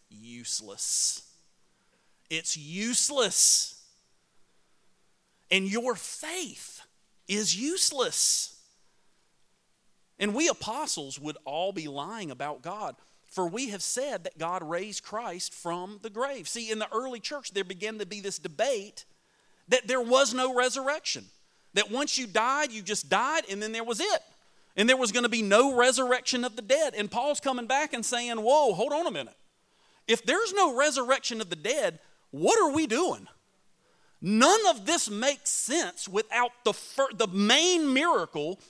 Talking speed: 155 wpm